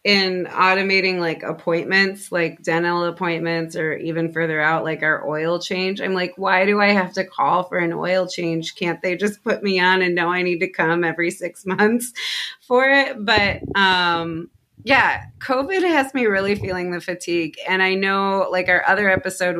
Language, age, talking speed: English, 30-49, 185 wpm